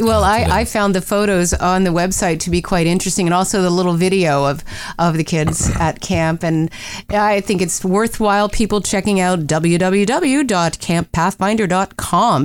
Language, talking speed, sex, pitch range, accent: English, 160 wpm, female, 165-210 Hz, American